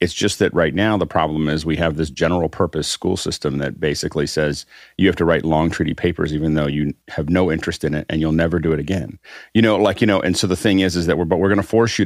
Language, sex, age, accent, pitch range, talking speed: English, male, 40-59, American, 75-95 Hz, 285 wpm